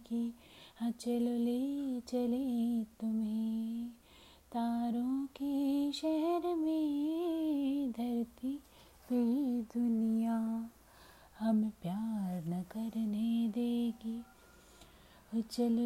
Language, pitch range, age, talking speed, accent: Hindi, 230-300 Hz, 30-49, 70 wpm, native